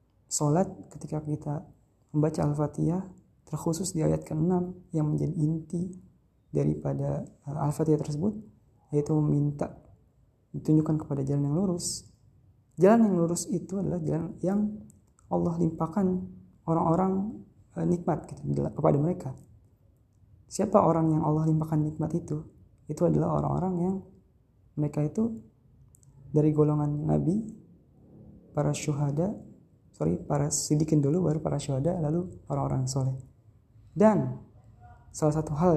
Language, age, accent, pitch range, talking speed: Indonesian, 20-39, native, 125-165 Hz, 115 wpm